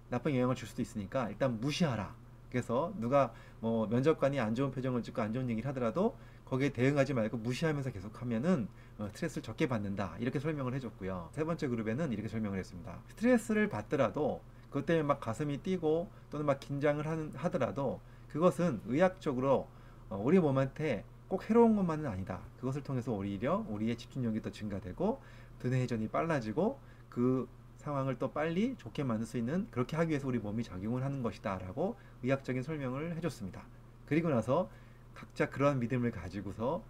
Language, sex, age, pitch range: Korean, male, 30-49, 110-145 Hz